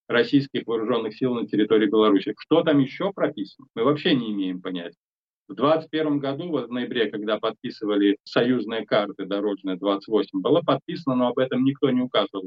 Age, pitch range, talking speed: 20-39, 110-140 Hz, 165 wpm